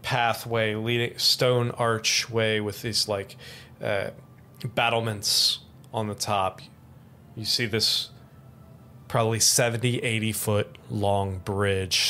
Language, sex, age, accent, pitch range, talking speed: English, male, 30-49, American, 105-125 Hz, 105 wpm